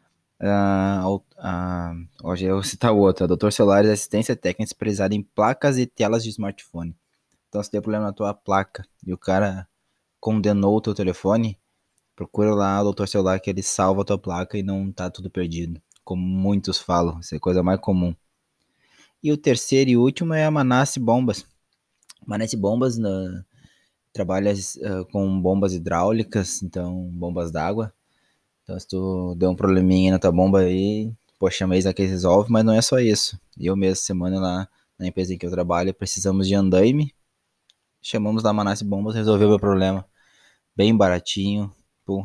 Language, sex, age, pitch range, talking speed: Portuguese, male, 20-39, 90-105 Hz, 170 wpm